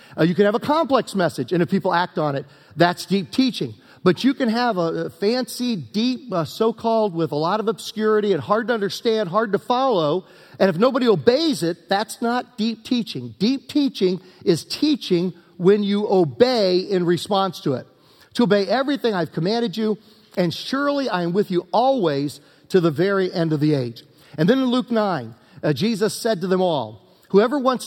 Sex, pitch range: male, 170-235 Hz